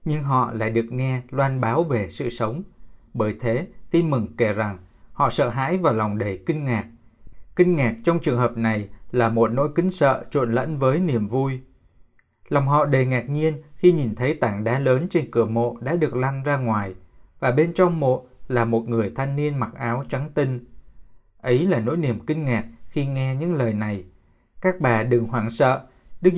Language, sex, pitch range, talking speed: Vietnamese, male, 115-150 Hz, 200 wpm